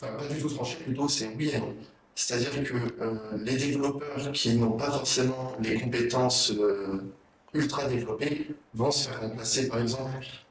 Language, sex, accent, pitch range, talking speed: French, male, French, 115-140 Hz, 165 wpm